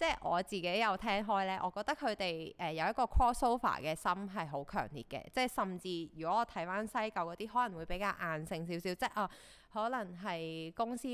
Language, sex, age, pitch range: Chinese, female, 20-39, 165-220 Hz